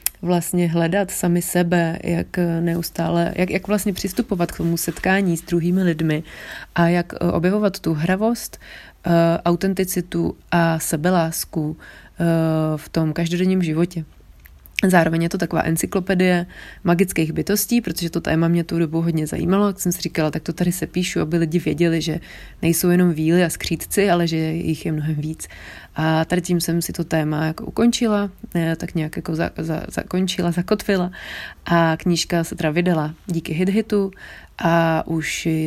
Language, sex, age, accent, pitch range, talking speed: Czech, female, 30-49, native, 160-180 Hz, 155 wpm